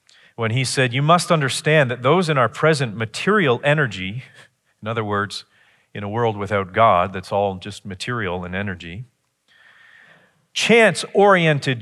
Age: 40-59